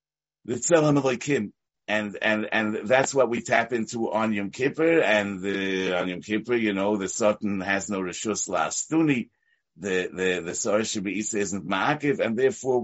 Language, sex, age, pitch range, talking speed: English, male, 50-69, 105-150 Hz, 150 wpm